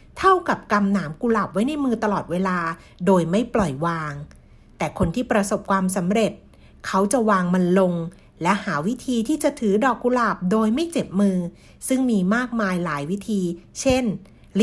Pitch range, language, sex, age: 190-240 Hz, Thai, female, 60-79